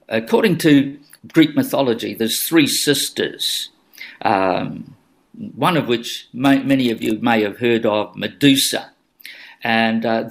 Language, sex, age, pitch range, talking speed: English, male, 50-69, 115-160 Hz, 135 wpm